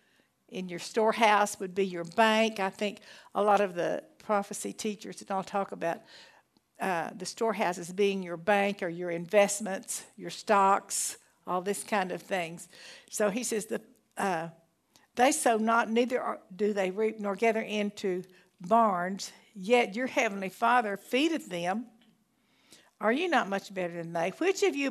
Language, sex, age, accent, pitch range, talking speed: English, female, 60-79, American, 195-245 Hz, 160 wpm